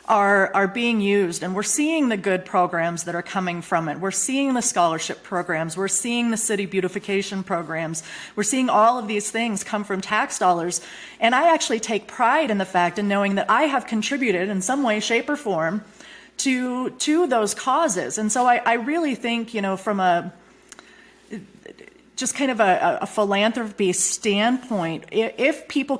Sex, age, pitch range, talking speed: female, 30-49, 185-230 Hz, 180 wpm